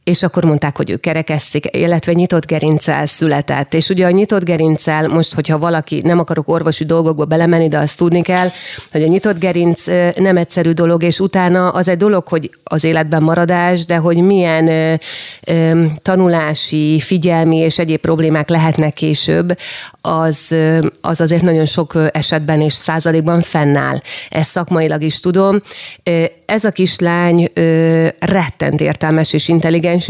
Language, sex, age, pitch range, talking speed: Hungarian, female, 30-49, 155-180 Hz, 145 wpm